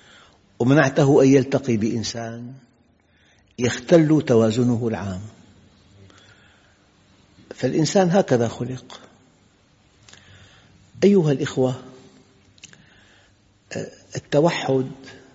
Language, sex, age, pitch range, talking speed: Arabic, male, 60-79, 110-140 Hz, 50 wpm